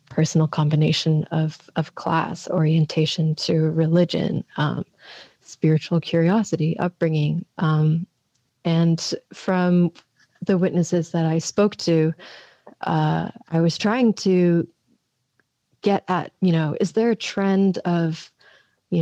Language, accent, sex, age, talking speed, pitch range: English, American, female, 30-49, 115 wpm, 160-190 Hz